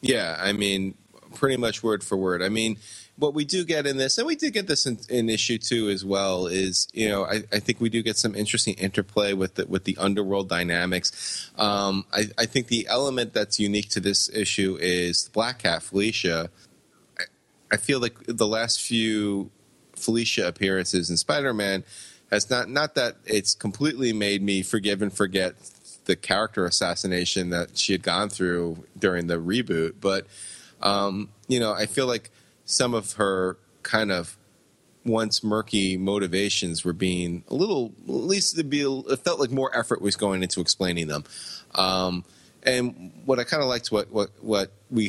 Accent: American